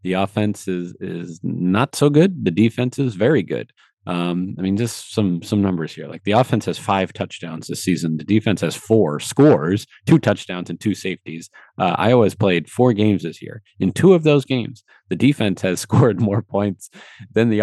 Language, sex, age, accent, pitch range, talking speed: English, male, 30-49, American, 90-115 Hz, 200 wpm